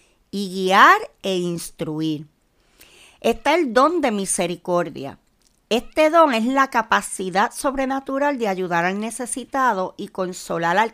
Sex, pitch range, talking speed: female, 185-255 Hz, 120 wpm